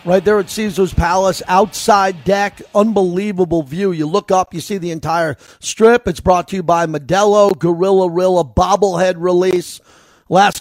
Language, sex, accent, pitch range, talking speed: English, male, American, 175-205 Hz, 160 wpm